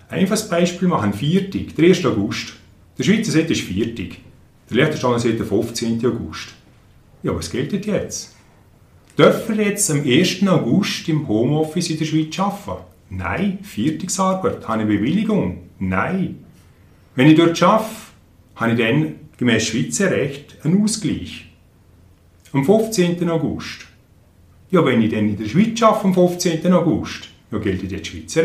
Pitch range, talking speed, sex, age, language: 110-185 Hz, 150 wpm, male, 40-59, German